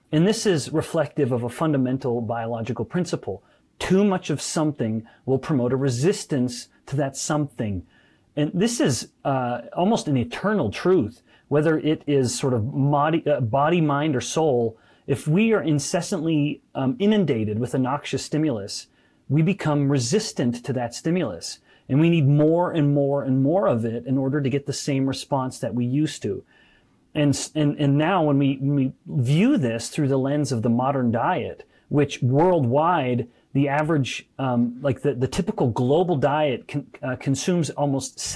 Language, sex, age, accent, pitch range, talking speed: English, male, 30-49, American, 130-155 Hz, 165 wpm